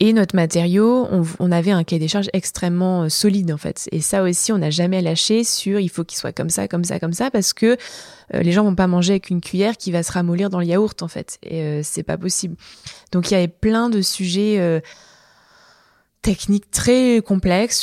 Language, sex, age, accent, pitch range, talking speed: French, female, 20-39, French, 165-205 Hz, 230 wpm